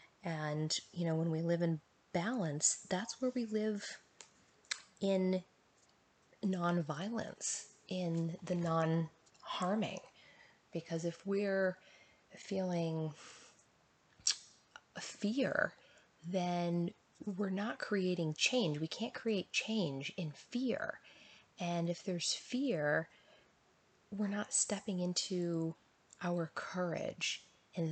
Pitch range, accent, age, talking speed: 155-195 Hz, American, 20-39, 95 wpm